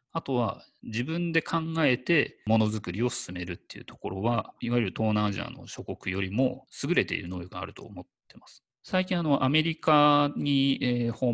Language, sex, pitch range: Japanese, male, 95-130 Hz